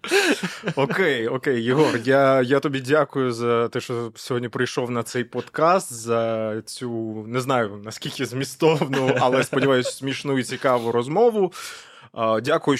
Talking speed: 125 wpm